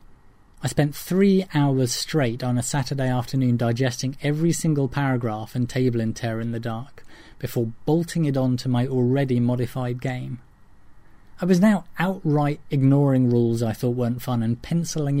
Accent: British